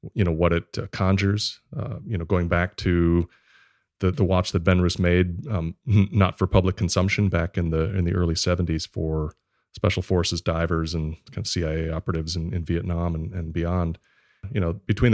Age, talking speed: 30-49, 190 wpm